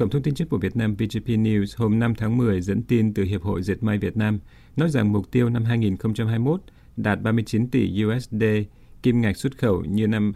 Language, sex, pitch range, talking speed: Vietnamese, male, 100-120 Hz, 220 wpm